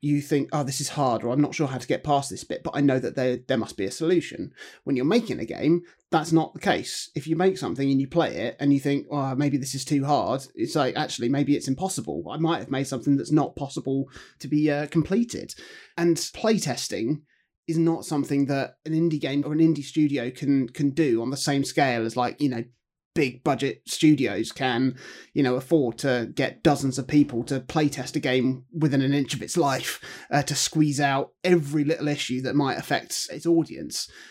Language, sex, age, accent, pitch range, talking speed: English, male, 30-49, British, 140-165 Hz, 220 wpm